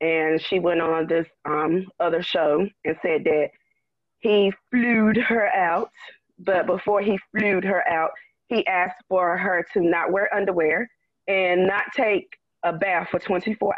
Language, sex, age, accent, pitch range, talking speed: English, female, 20-39, American, 180-230 Hz, 155 wpm